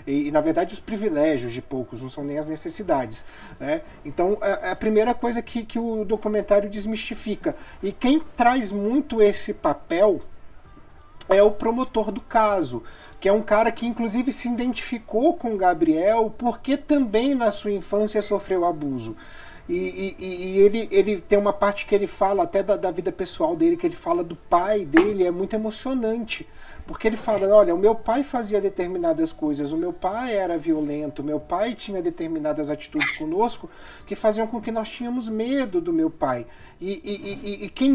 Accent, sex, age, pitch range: Brazilian, male, 40-59, 175-245 Hz